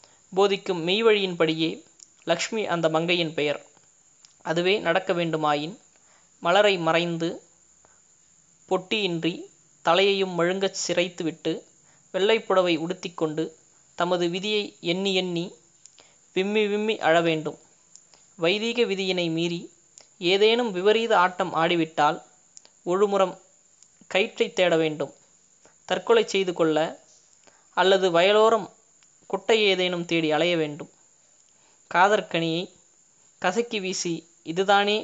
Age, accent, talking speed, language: 20-39, native, 85 wpm, Tamil